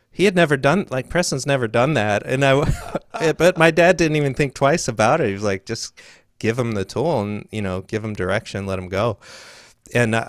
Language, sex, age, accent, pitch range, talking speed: English, male, 30-49, American, 95-115 Hz, 220 wpm